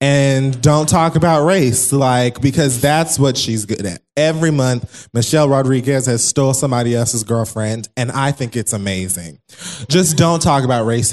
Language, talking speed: English, 165 wpm